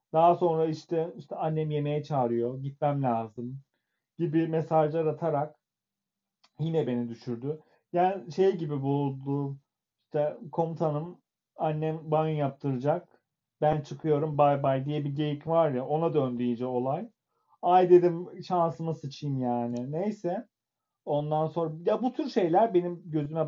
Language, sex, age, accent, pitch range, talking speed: Turkish, male, 40-59, native, 135-165 Hz, 130 wpm